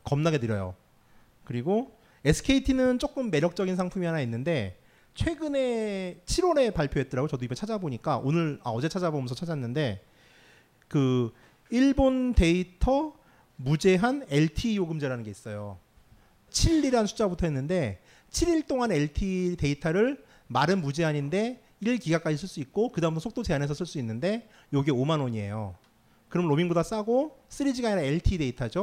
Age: 40-59